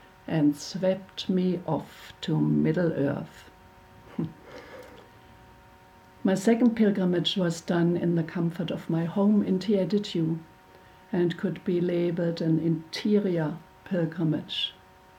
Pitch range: 165-190 Hz